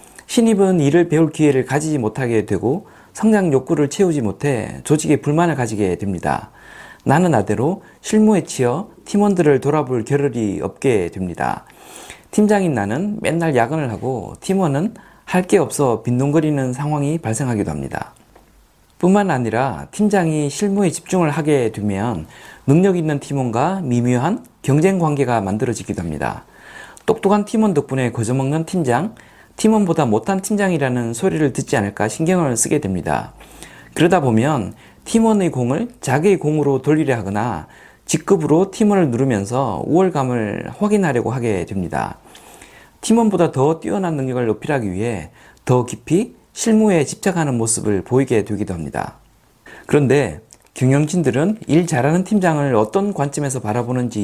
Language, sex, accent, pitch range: Korean, male, native, 120-180 Hz